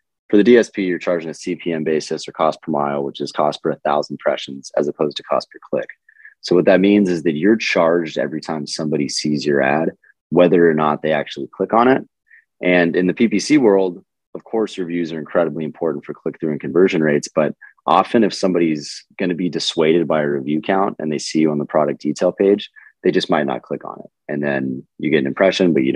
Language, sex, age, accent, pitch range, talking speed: English, male, 30-49, American, 75-95 Hz, 230 wpm